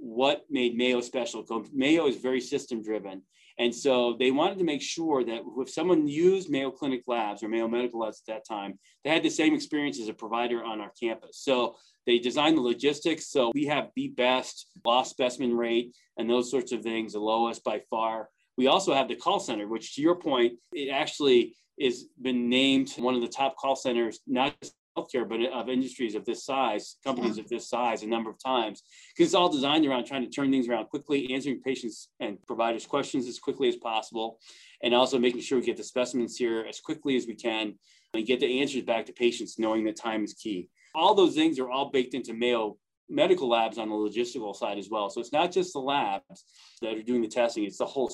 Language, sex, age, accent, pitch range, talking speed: English, male, 30-49, American, 115-140 Hz, 220 wpm